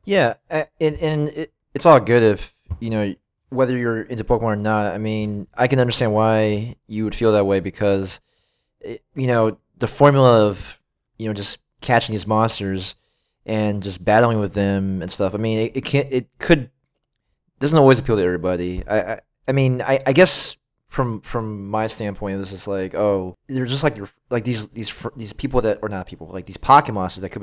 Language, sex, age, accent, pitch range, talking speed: English, male, 20-39, American, 100-120 Hz, 205 wpm